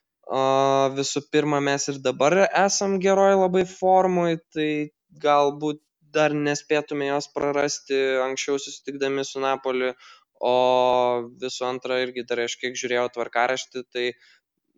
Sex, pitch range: male, 120-145 Hz